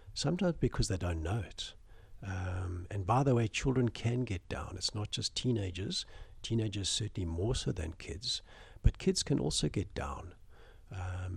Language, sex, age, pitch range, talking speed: English, male, 60-79, 90-105 Hz, 170 wpm